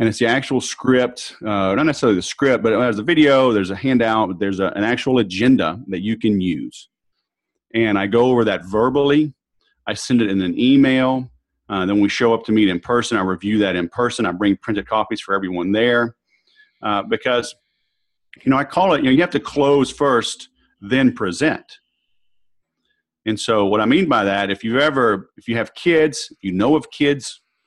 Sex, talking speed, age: male, 205 wpm, 40-59